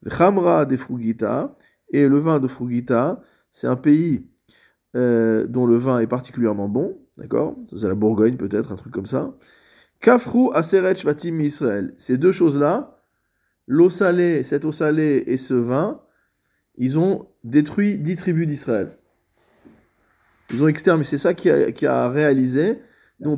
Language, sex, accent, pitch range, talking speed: French, male, French, 115-155 Hz, 155 wpm